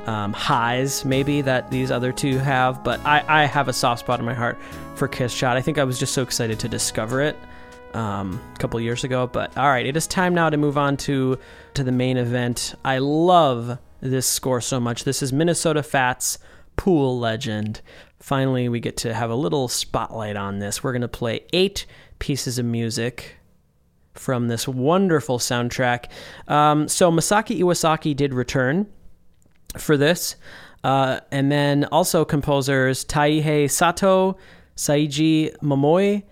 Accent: American